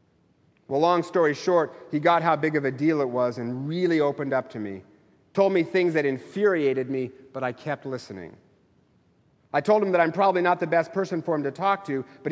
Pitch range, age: 135-175 Hz, 40-59